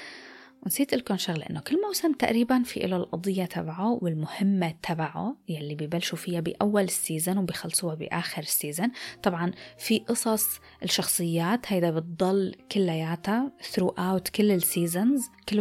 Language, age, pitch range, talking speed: Arabic, 20-39, 175-230 Hz, 125 wpm